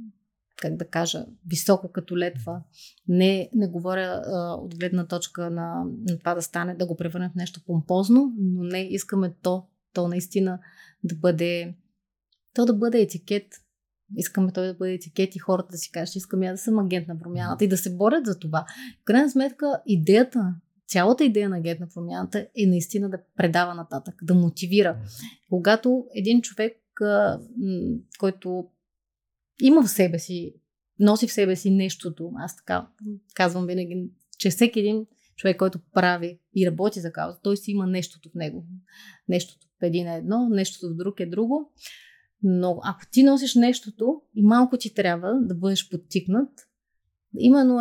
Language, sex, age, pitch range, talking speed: Bulgarian, female, 20-39, 175-215 Hz, 165 wpm